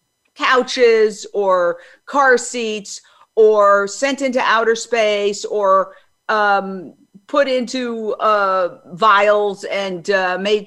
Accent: American